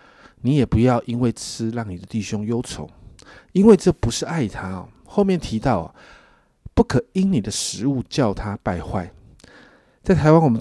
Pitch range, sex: 100-130 Hz, male